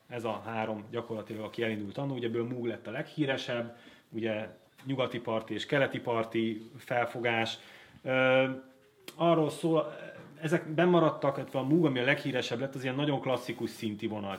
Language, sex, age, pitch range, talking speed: Hungarian, male, 30-49, 110-135 Hz, 160 wpm